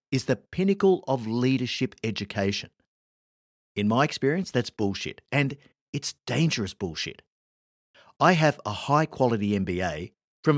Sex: male